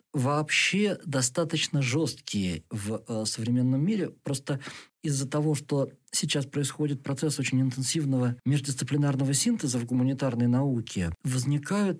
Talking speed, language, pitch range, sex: 115 wpm, Russian, 115-140 Hz, male